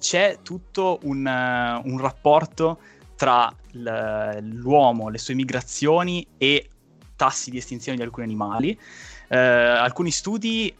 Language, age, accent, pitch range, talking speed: Italian, 20-39, native, 115-145 Hz, 115 wpm